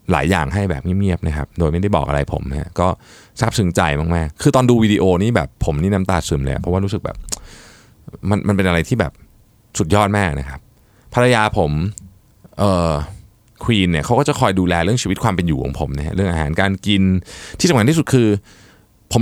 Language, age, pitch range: Thai, 20-39, 85-115 Hz